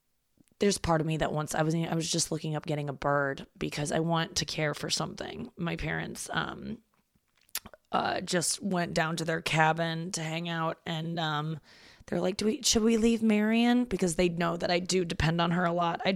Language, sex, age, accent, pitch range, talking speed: English, female, 20-39, American, 165-200 Hz, 215 wpm